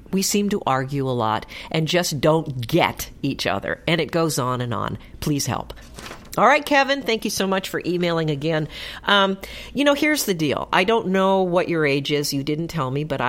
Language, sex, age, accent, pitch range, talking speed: English, female, 50-69, American, 145-205 Hz, 215 wpm